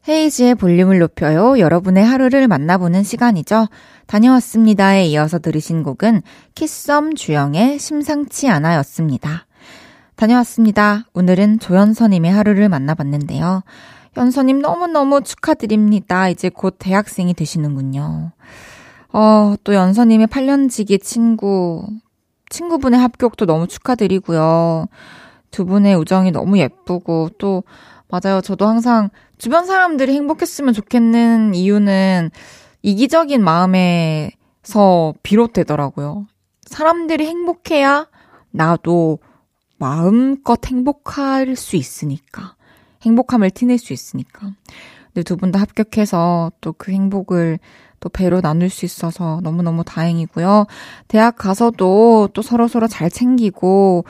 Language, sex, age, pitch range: Korean, female, 20-39, 170-235 Hz